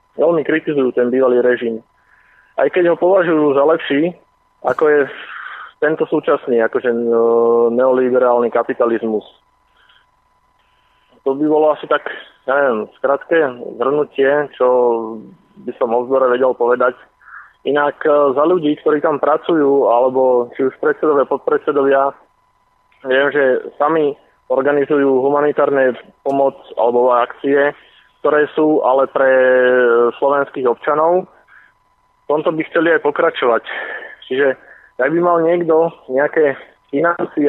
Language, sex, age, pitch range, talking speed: Slovak, male, 20-39, 130-170 Hz, 115 wpm